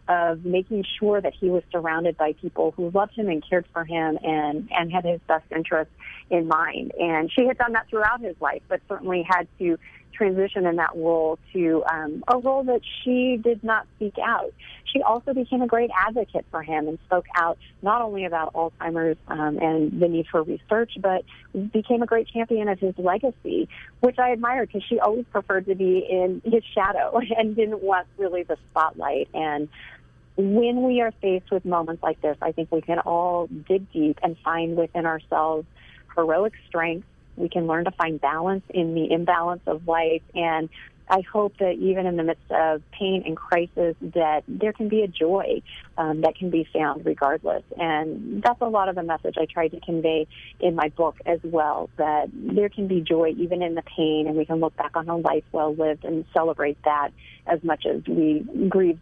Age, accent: 40-59, American